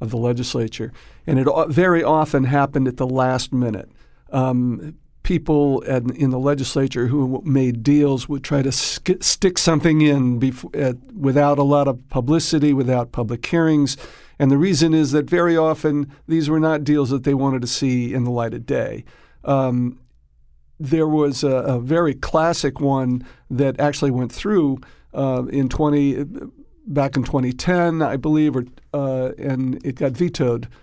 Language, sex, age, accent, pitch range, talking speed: English, male, 60-79, American, 130-150 Hz, 160 wpm